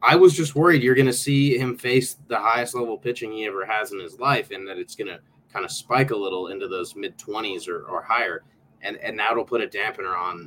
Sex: male